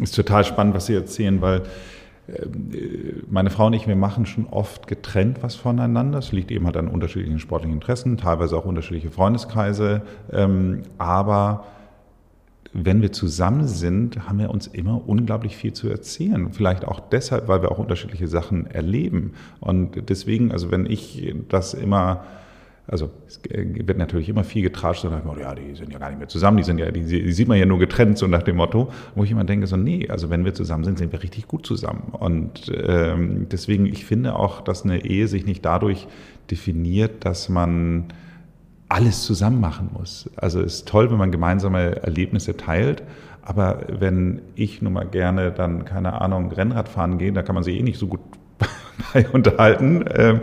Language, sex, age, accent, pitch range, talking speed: German, male, 40-59, German, 90-110 Hz, 185 wpm